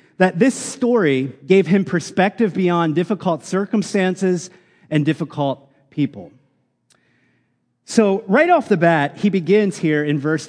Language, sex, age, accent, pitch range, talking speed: English, male, 30-49, American, 145-200 Hz, 125 wpm